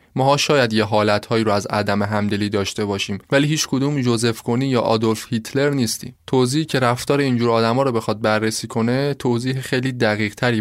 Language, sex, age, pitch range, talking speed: Persian, male, 20-39, 105-130 Hz, 180 wpm